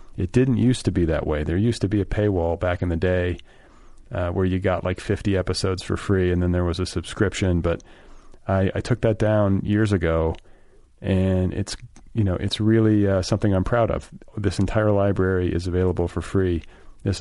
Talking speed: 205 wpm